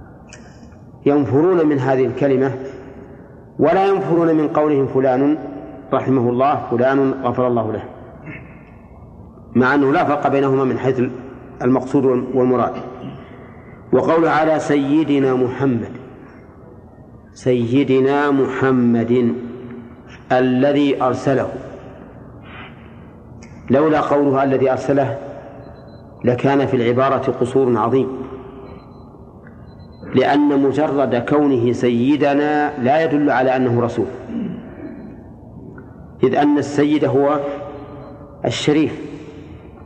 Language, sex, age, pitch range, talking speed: Arabic, male, 50-69, 125-145 Hz, 85 wpm